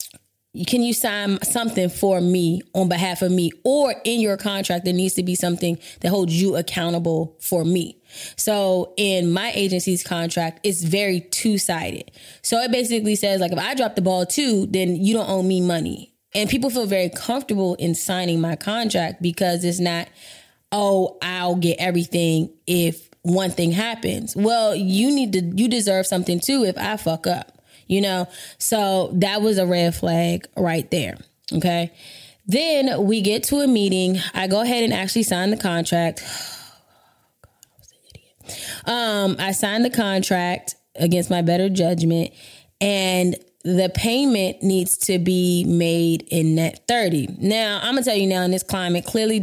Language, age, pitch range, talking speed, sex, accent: English, 20-39, 175-210 Hz, 175 wpm, female, American